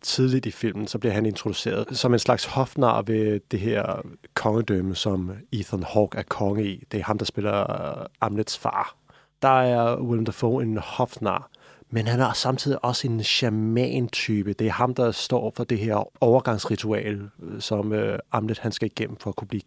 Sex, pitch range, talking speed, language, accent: male, 110-130 Hz, 175 wpm, Danish, native